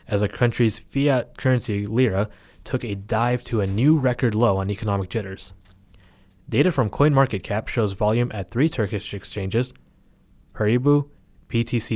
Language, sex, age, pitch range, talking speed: English, male, 20-39, 100-125 Hz, 140 wpm